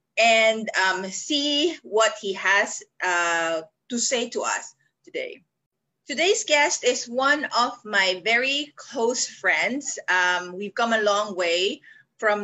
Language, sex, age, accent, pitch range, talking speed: English, female, 20-39, Filipino, 190-250 Hz, 135 wpm